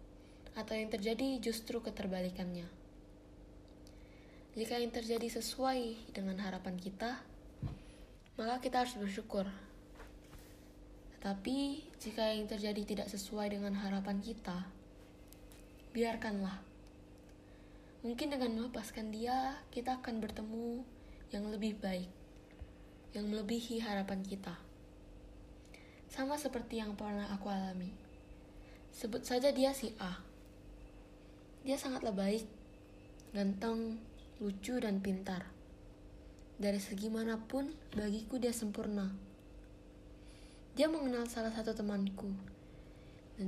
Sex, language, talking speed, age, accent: female, Indonesian, 95 wpm, 20-39, native